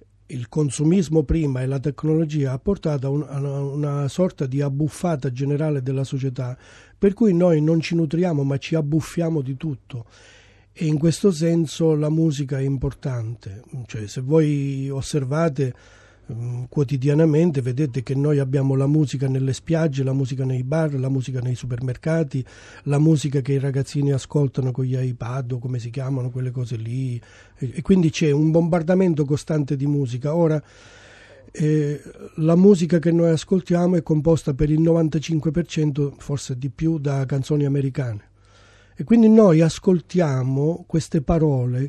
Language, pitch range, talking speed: Italian, 135-165 Hz, 150 wpm